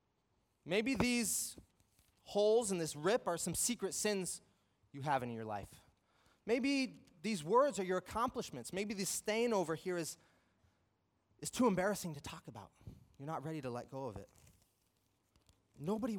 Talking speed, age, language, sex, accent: 155 wpm, 30-49, English, male, American